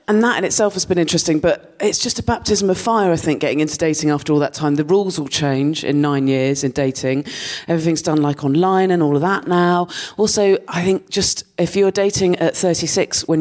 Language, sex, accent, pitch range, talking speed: English, female, British, 150-200 Hz, 230 wpm